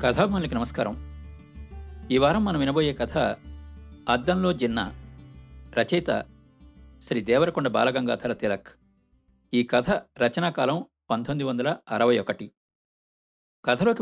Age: 50-69